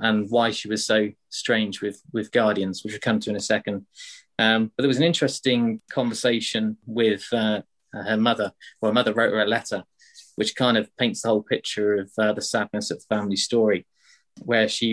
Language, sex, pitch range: English, male, 105-120 Hz